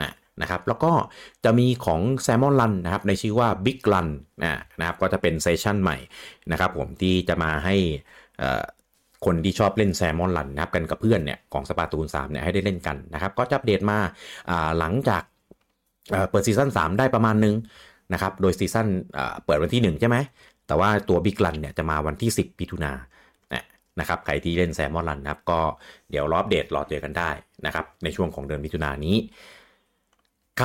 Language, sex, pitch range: Thai, male, 85-105 Hz